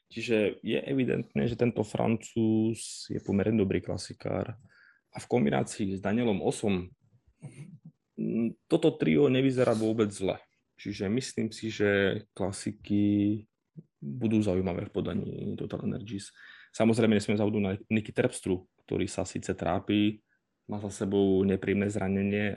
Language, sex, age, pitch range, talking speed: Slovak, male, 20-39, 95-110 Hz, 125 wpm